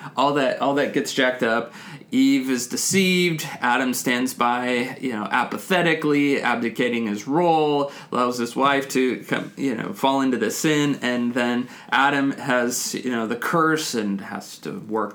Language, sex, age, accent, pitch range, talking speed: English, male, 20-39, American, 120-150 Hz, 165 wpm